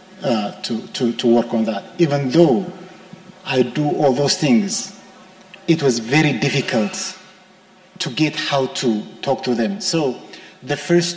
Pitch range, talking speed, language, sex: 130-185 Hz, 150 wpm, English, male